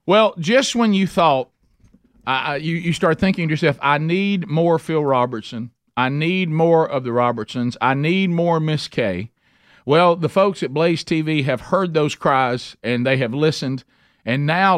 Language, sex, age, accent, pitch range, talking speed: English, male, 50-69, American, 120-160 Hz, 180 wpm